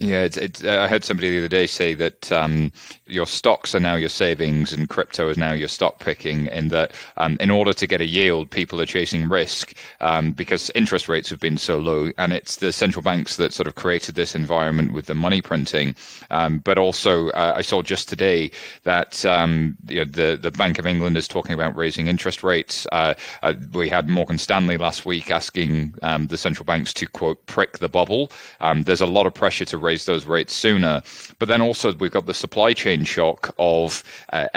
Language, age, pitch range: English, 30-49, 80-95 Hz